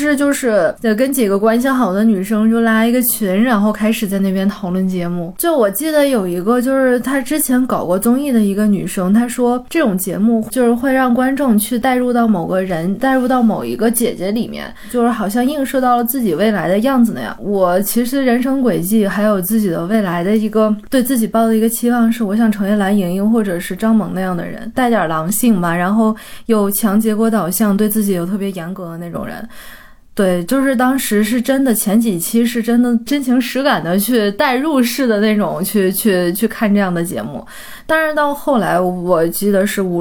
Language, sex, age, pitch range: Chinese, female, 20-39, 195-240 Hz